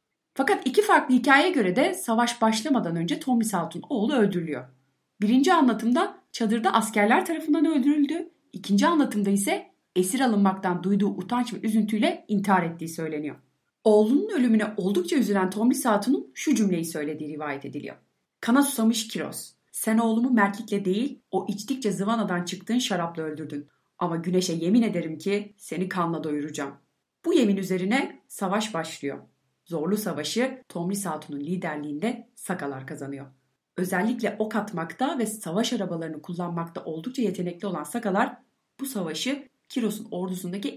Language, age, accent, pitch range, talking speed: Turkish, 30-49, native, 170-235 Hz, 130 wpm